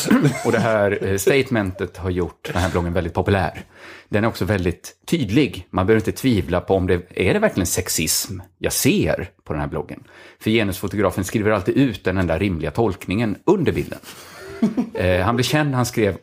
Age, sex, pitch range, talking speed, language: 30-49, male, 90-125 Hz, 180 wpm, Swedish